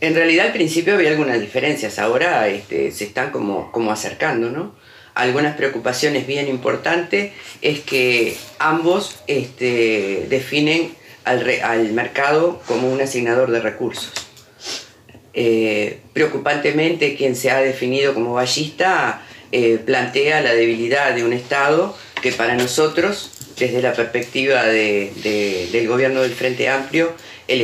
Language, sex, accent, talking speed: Spanish, female, Argentinian, 120 wpm